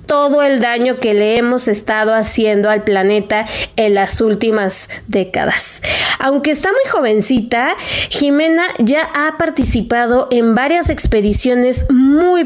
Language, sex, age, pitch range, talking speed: Spanish, female, 20-39, 220-280 Hz, 125 wpm